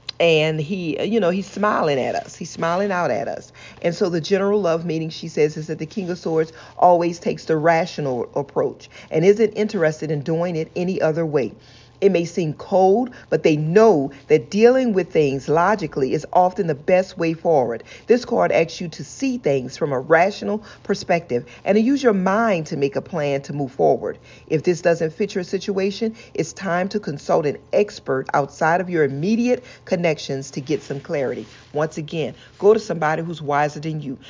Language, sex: English, female